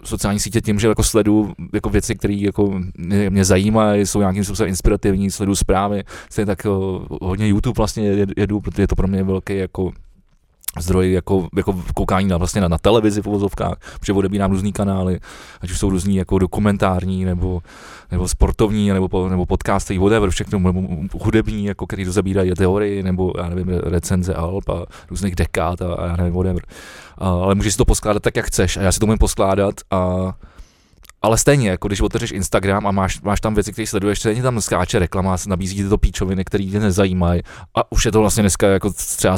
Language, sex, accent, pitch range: Czech, male, native, 90-105 Hz